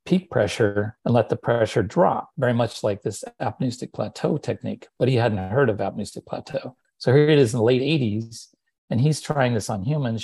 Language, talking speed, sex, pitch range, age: English, 200 wpm, male, 110-130 Hz, 40-59